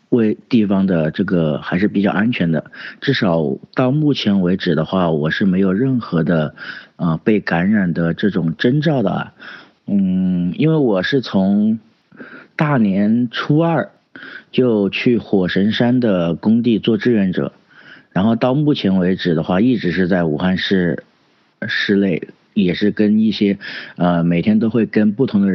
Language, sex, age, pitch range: Chinese, male, 50-69, 85-110 Hz